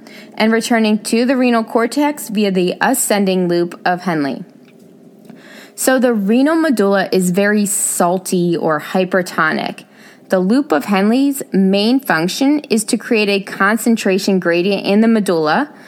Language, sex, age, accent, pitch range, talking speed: English, female, 20-39, American, 185-235 Hz, 135 wpm